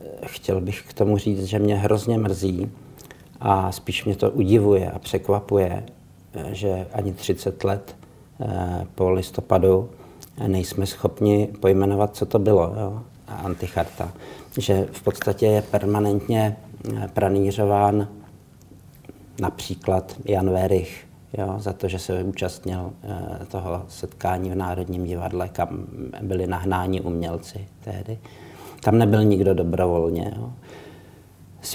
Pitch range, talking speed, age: 95-105 Hz, 115 wpm, 50-69